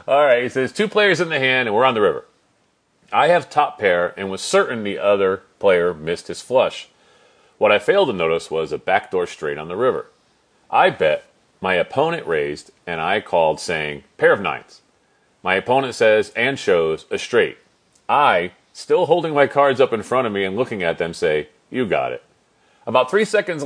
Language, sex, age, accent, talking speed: English, male, 40-59, American, 200 wpm